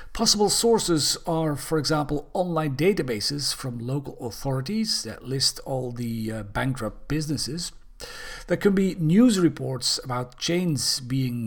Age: 50-69